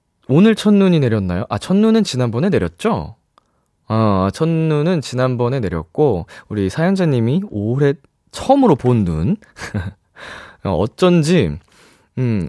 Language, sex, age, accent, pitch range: Korean, male, 20-39, native, 95-145 Hz